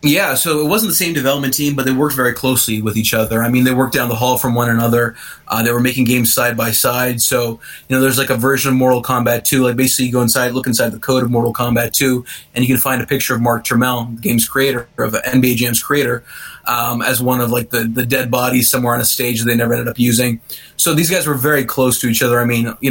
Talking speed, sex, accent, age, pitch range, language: 275 wpm, male, American, 20-39, 120-135 Hz, English